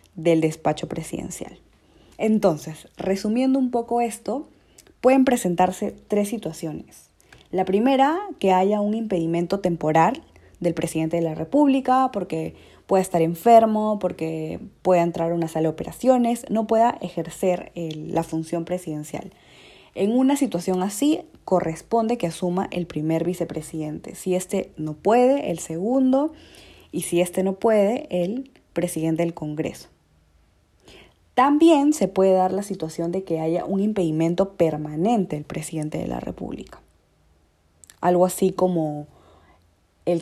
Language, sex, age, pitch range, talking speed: Spanish, female, 20-39, 160-205 Hz, 130 wpm